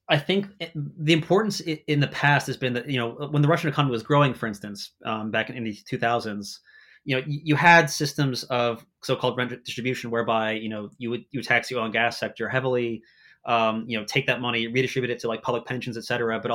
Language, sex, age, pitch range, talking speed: English, male, 30-49, 110-130 Hz, 235 wpm